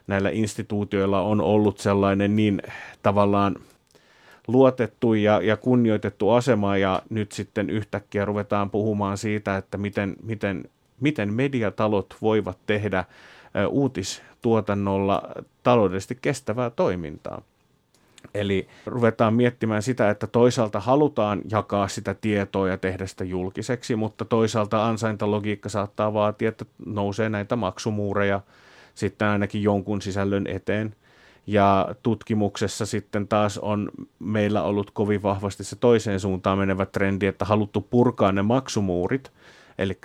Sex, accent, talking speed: male, native, 115 wpm